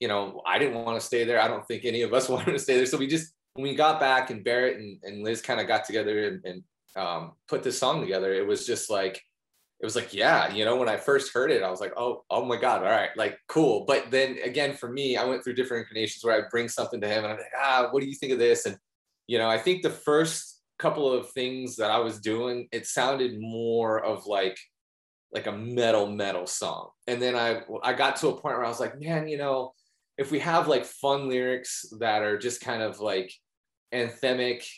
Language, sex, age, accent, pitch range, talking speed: English, male, 20-39, American, 110-140 Hz, 250 wpm